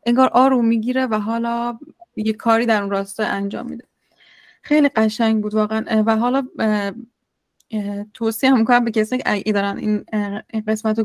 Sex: female